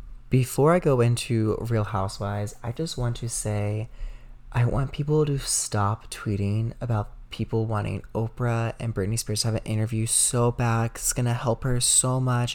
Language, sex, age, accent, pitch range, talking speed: English, male, 20-39, American, 110-125 Hz, 175 wpm